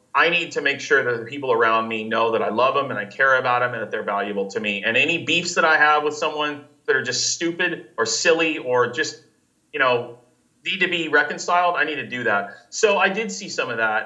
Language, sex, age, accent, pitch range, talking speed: English, male, 30-49, American, 125-170 Hz, 255 wpm